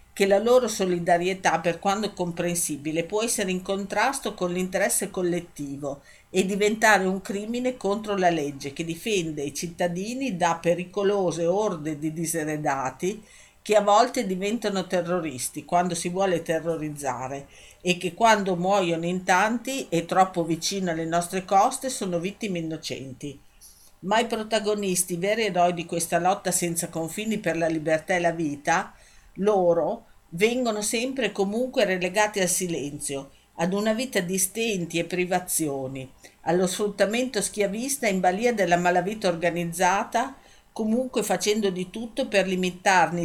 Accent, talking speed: native, 135 wpm